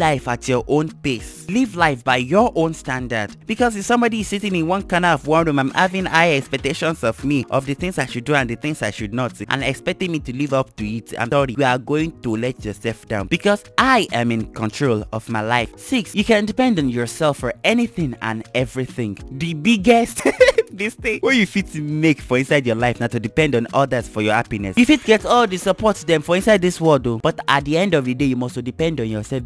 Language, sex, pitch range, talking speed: English, male, 120-185 Hz, 245 wpm